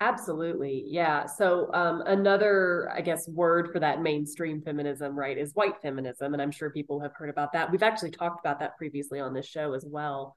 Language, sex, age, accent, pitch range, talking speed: English, female, 20-39, American, 150-180 Hz, 205 wpm